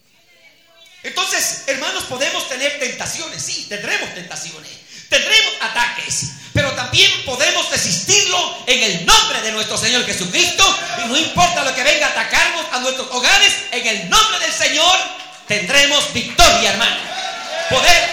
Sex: male